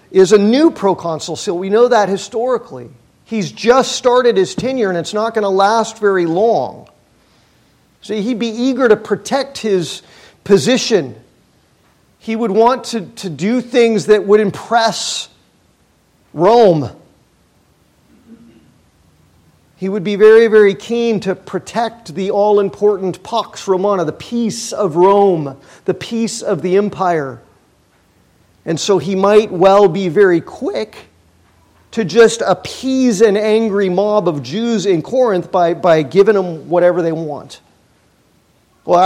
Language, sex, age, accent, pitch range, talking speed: English, male, 50-69, American, 175-220 Hz, 135 wpm